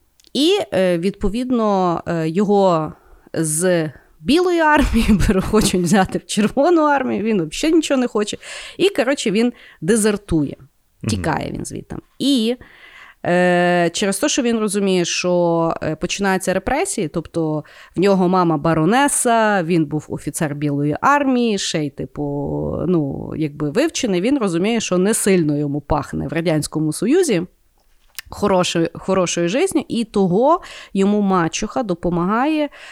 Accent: native